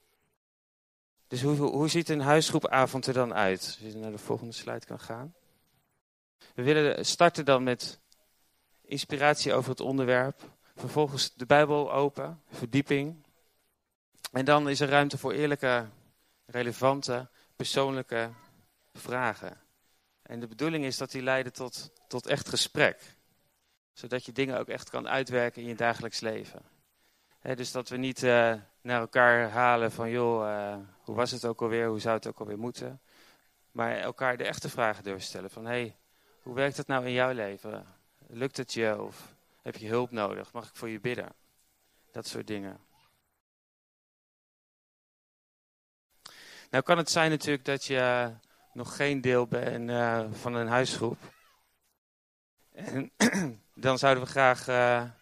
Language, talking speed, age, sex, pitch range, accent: Dutch, 150 wpm, 40-59, male, 115-135 Hz, Dutch